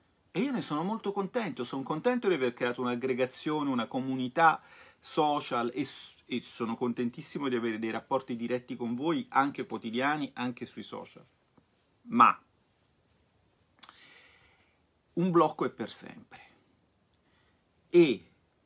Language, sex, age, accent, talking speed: Italian, male, 40-59, native, 120 wpm